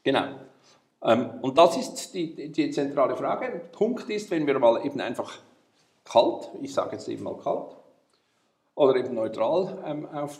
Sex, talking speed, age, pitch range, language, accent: male, 150 wpm, 50-69, 130-205 Hz, German, Austrian